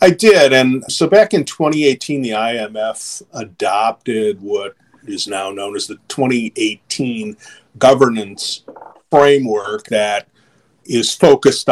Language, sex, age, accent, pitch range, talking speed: English, male, 50-69, American, 105-140 Hz, 115 wpm